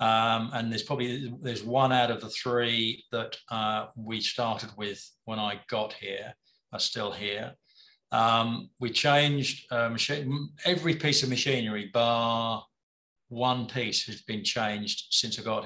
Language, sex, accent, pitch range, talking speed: English, male, British, 115-140 Hz, 155 wpm